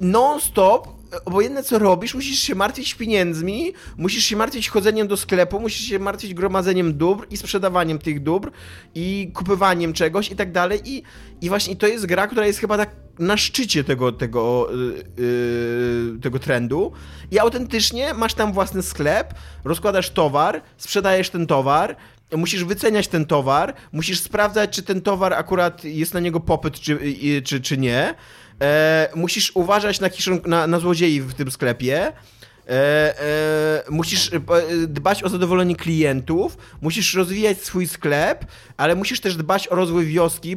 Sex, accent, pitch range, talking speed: male, native, 145-200 Hz, 155 wpm